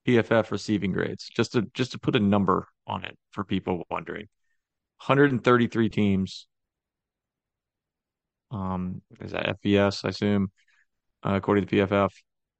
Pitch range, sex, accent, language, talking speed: 100-115 Hz, male, American, English, 130 wpm